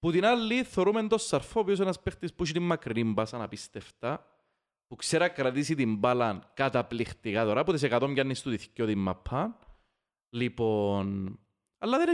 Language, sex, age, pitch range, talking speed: Greek, male, 30-49, 115-185 Hz, 100 wpm